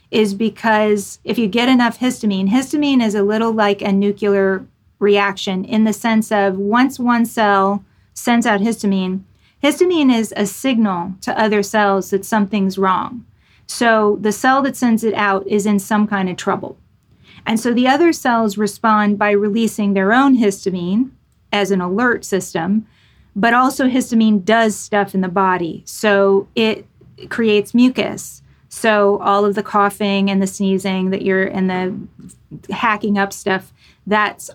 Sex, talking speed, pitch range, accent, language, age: female, 160 wpm, 195-225 Hz, American, English, 30-49